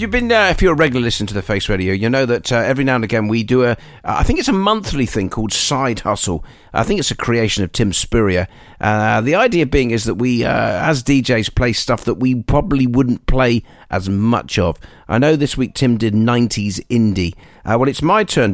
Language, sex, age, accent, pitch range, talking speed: English, male, 40-59, British, 95-130 Hz, 240 wpm